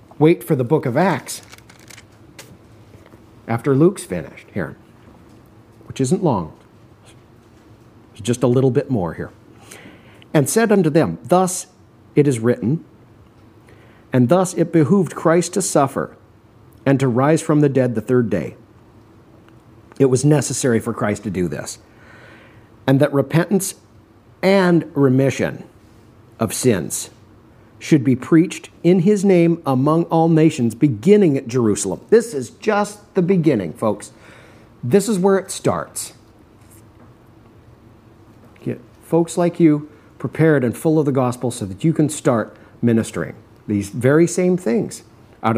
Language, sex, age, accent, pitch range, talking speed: English, male, 50-69, American, 110-155 Hz, 135 wpm